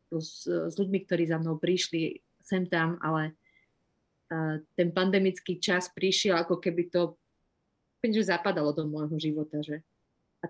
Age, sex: 30-49, female